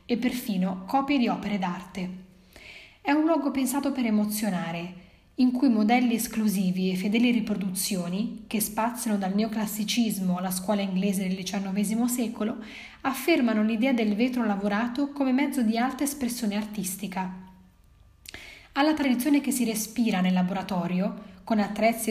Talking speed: 135 wpm